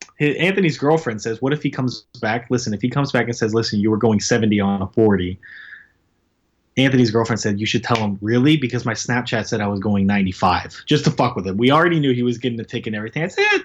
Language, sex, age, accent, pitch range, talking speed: English, male, 20-39, American, 120-180 Hz, 255 wpm